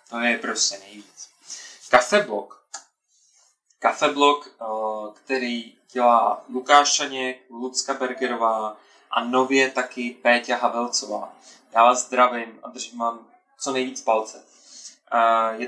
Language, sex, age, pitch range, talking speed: Czech, male, 20-39, 120-140 Hz, 100 wpm